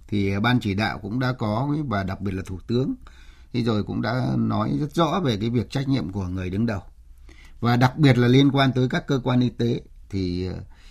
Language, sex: Vietnamese, male